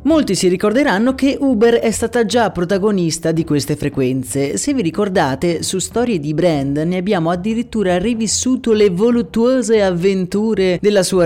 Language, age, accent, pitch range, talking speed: Italian, 30-49, native, 150-225 Hz, 150 wpm